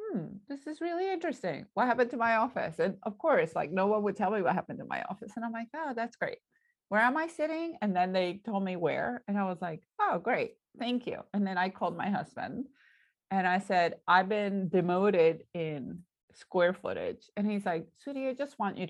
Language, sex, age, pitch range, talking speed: English, female, 30-49, 185-255 Hz, 225 wpm